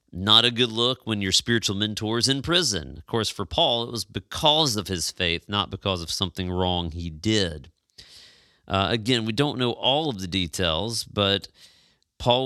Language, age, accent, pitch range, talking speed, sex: English, 40-59, American, 95-125 Hz, 190 wpm, male